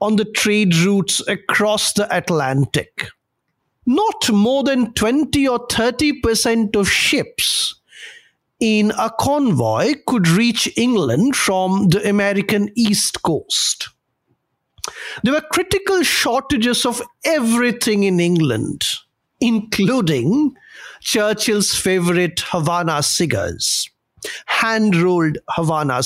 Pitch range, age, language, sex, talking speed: 175-240 Hz, 50-69, English, male, 95 wpm